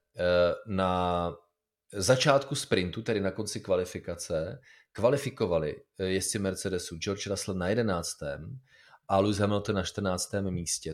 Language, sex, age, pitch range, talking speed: Czech, male, 30-49, 95-125 Hz, 110 wpm